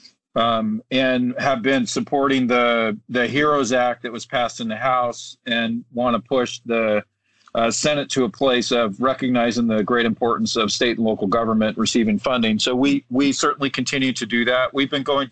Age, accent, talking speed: 40-59, American, 190 wpm